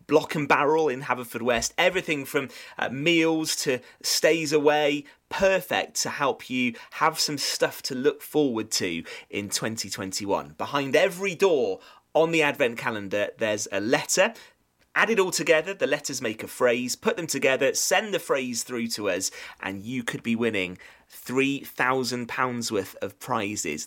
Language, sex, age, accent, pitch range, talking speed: English, male, 30-49, British, 105-175 Hz, 160 wpm